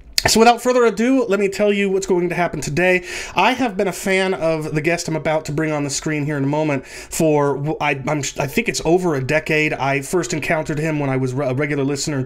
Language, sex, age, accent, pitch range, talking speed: English, male, 30-49, American, 140-175 Hz, 250 wpm